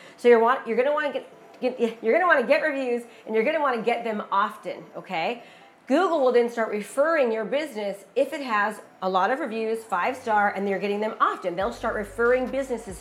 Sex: female